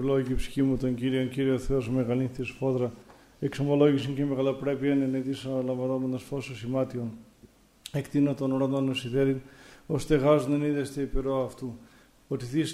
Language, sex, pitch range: Greek, male, 130-140 Hz